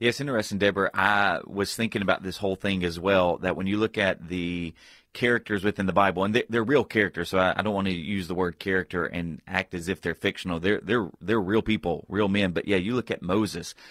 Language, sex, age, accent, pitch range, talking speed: English, male, 30-49, American, 95-110 Hz, 240 wpm